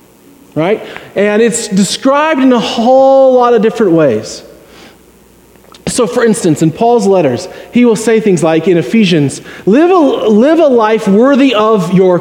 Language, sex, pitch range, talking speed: English, male, 180-235 Hz, 150 wpm